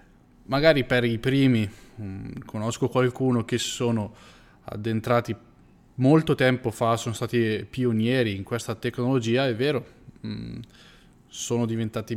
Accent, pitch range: native, 115-130 Hz